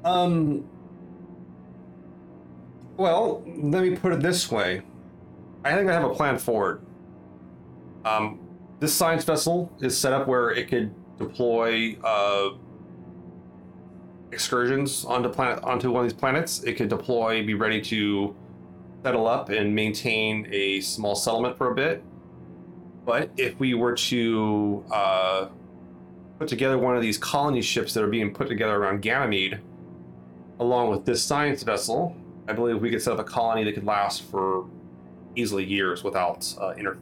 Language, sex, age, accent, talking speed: English, male, 30-49, American, 150 wpm